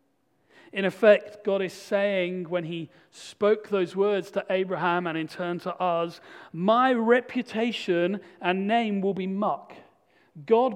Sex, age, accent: male, 40-59, British